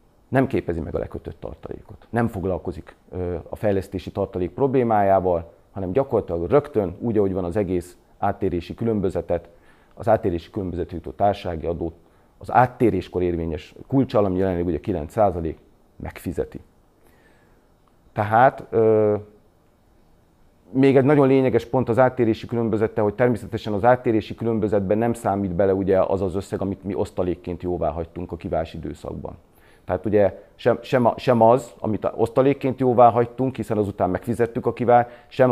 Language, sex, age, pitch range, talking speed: Hungarian, male, 40-59, 90-115 Hz, 140 wpm